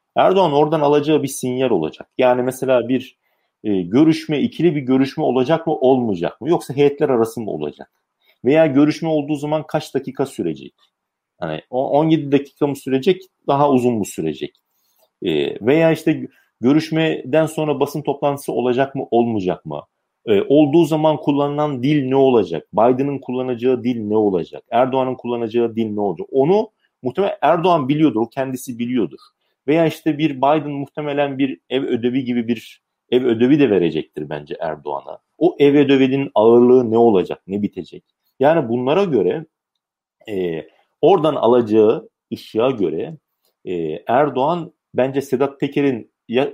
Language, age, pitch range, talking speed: Turkish, 40-59, 125-150 Hz, 145 wpm